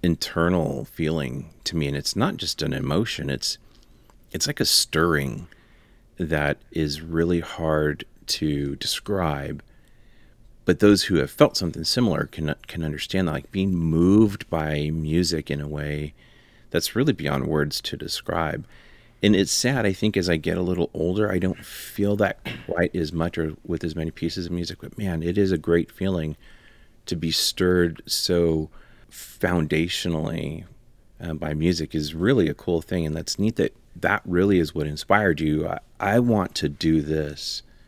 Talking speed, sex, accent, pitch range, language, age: 170 wpm, male, American, 80-100 Hz, English, 40-59